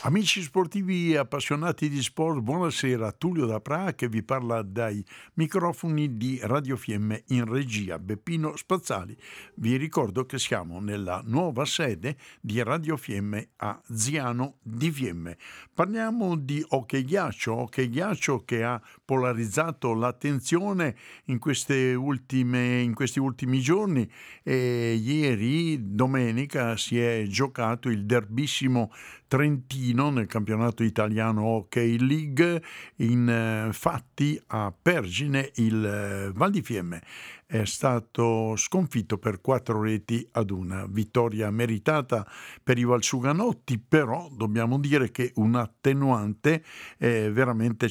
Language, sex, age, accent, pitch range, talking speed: Italian, male, 60-79, native, 110-140 Hz, 115 wpm